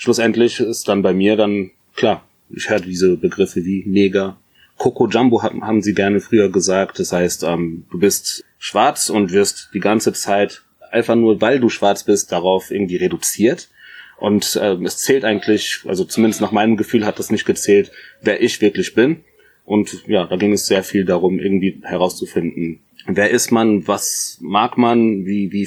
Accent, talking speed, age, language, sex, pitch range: German, 180 wpm, 30-49, German, male, 95-110 Hz